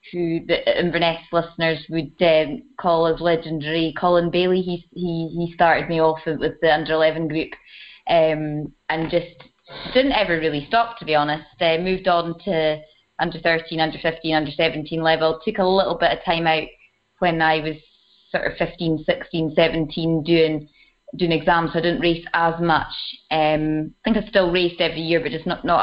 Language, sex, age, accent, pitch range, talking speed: English, female, 20-39, British, 155-175 Hz, 180 wpm